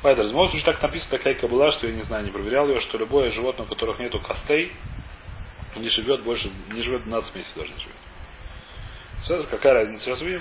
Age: 30-49